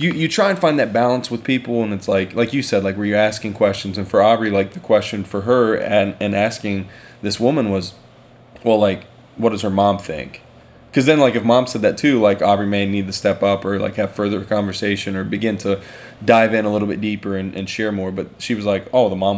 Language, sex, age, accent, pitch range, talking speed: English, male, 20-39, American, 100-120 Hz, 250 wpm